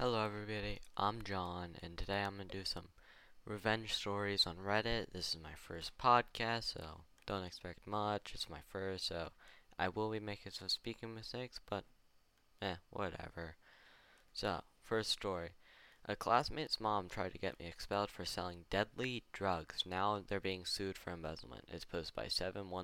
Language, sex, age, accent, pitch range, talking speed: Hindi, male, 10-29, American, 85-105 Hz, 165 wpm